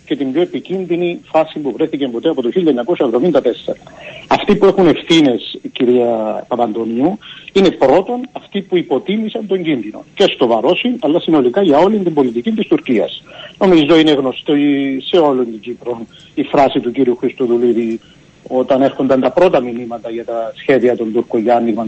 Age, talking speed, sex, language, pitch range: 60-79, 155 wpm, male, Greek, 125-185 Hz